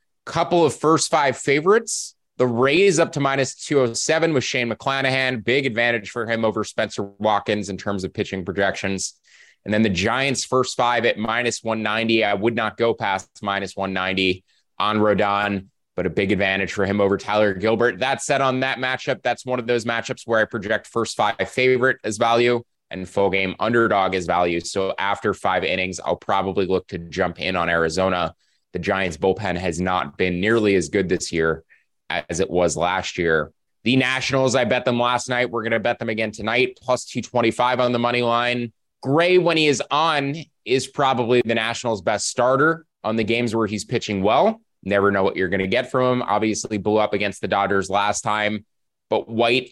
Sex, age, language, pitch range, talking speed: male, 20-39, English, 100-125 Hz, 195 wpm